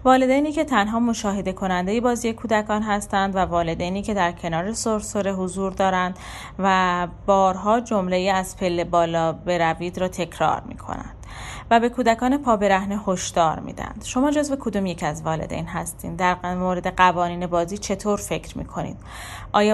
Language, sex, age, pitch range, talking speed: Persian, female, 30-49, 175-210 Hz, 155 wpm